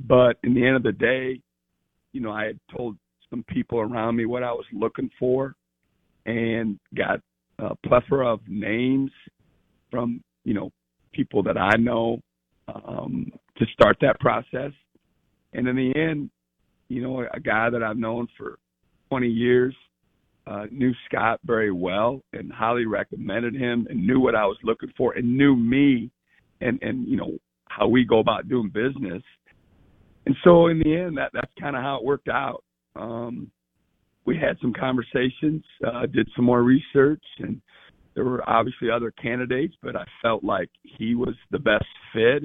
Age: 50-69